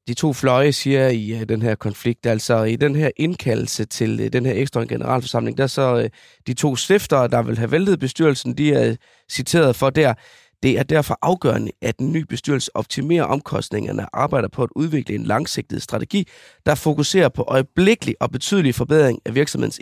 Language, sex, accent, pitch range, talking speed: Danish, male, native, 120-155 Hz, 185 wpm